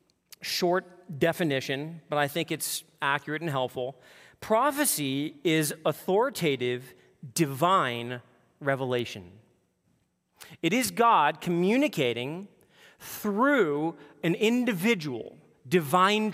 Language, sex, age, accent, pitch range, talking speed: English, male, 40-59, American, 150-225 Hz, 80 wpm